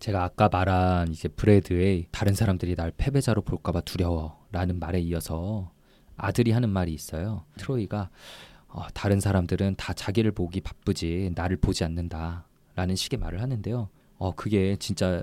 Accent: native